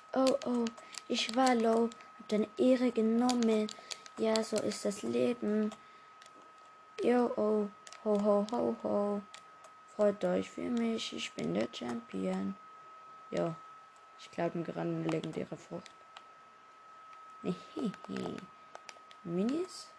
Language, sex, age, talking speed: German, female, 20-39, 110 wpm